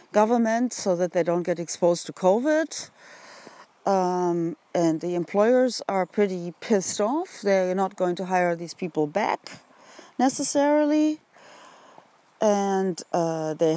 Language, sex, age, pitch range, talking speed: English, female, 40-59, 170-210 Hz, 125 wpm